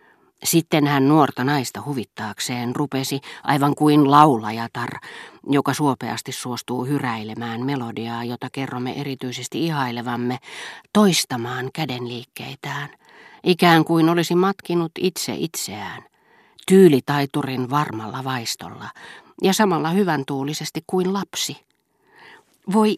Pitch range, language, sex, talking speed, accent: 130-180 Hz, Finnish, female, 95 wpm, native